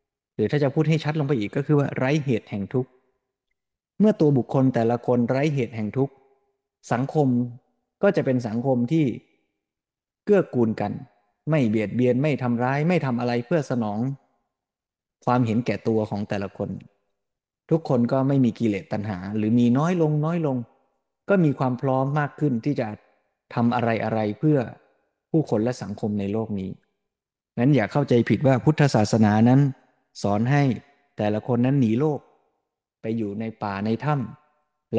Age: 20-39